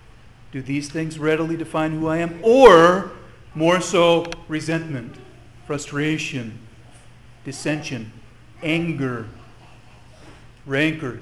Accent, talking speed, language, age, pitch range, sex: American, 85 wpm, English, 40-59, 120-155 Hz, male